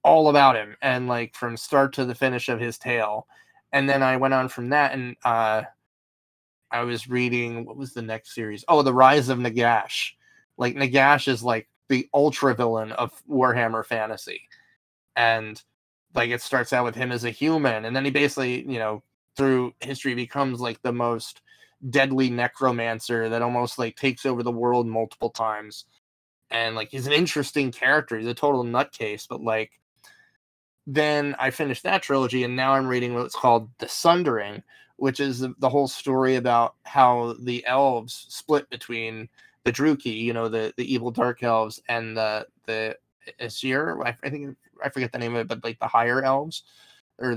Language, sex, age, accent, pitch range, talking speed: English, male, 20-39, American, 115-135 Hz, 180 wpm